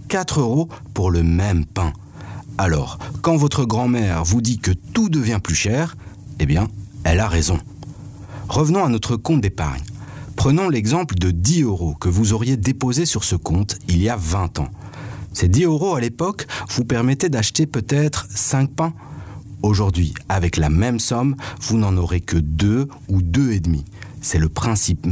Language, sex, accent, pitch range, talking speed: French, male, French, 90-135 Hz, 165 wpm